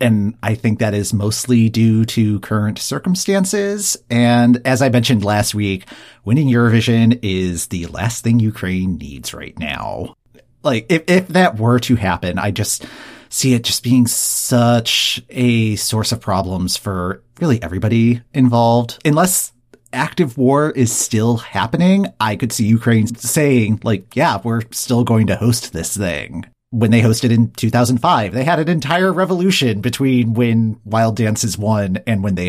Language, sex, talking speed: English, male, 160 wpm